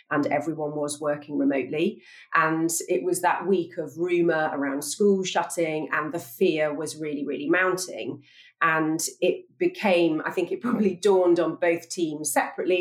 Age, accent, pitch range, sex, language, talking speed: 40-59, British, 155-200 Hz, female, English, 160 wpm